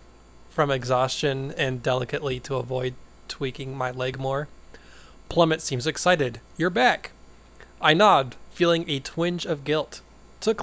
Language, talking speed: English, 130 wpm